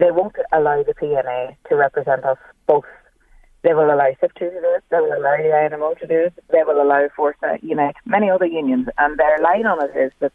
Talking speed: 240 wpm